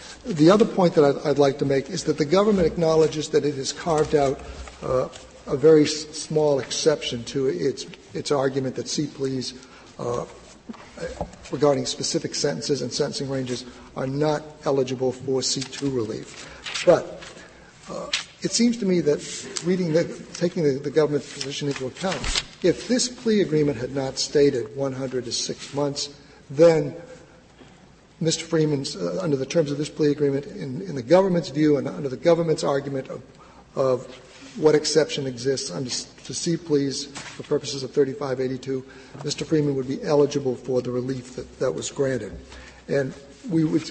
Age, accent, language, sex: 60-79, American, English, male